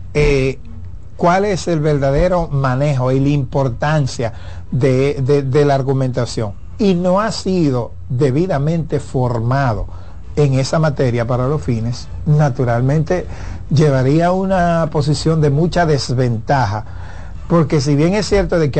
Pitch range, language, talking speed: 115-150 Hz, Spanish, 130 wpm